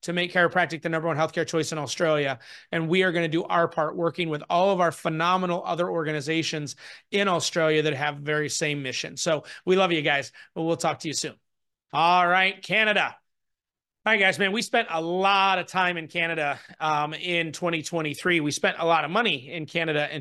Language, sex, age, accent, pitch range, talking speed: English, male, 30-49, American, 155-185 Hz, 210 wpm